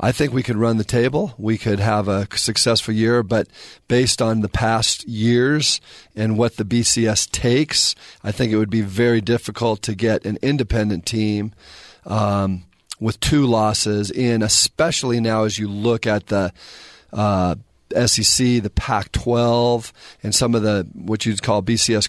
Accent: American